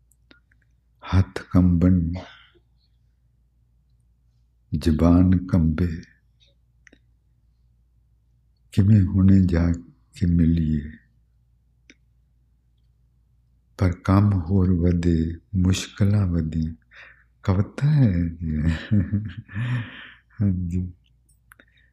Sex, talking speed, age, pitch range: male, 50 wpm, 50-69, 70-95 Hz